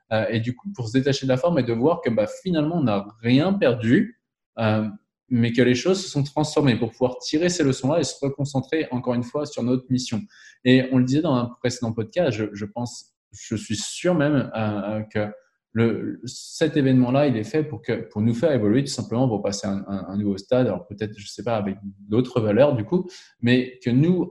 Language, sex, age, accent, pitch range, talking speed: French, male, 20-39, French, 110-135 Hz, 225 wpm